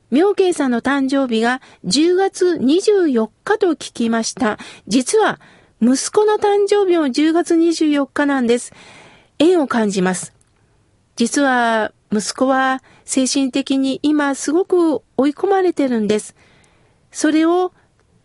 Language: Japanese